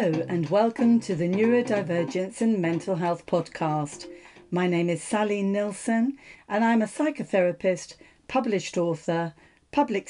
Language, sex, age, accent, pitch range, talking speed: English, female, 40-59, British, 170-215 Hz, 130 wpm